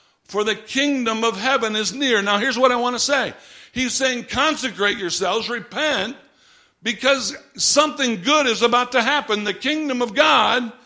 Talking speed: 165 wpm